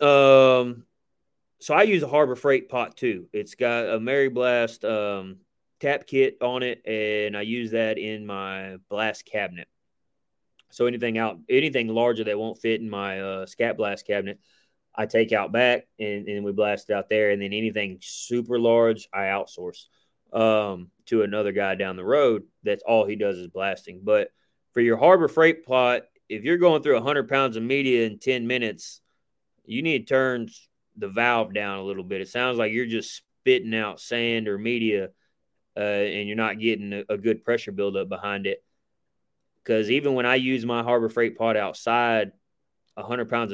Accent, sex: American, male